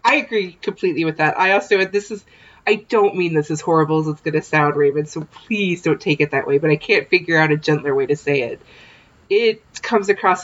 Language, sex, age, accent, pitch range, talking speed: English, female, 30-49, American, 155-185 Hz, 240 wpm